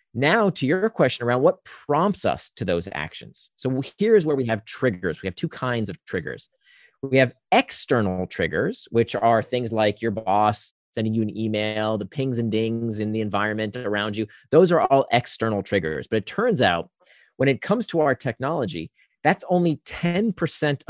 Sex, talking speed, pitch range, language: male, 185 wpm, 110-155 Hz, English